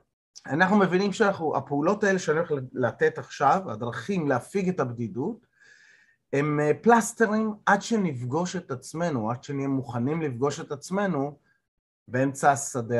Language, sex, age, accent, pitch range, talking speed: Hebrew, male, 30-49, native, 130-185 Hz, 125 wpm